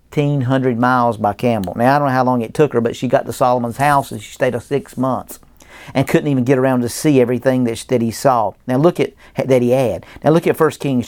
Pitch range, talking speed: 115-140 Hz, 250 wpm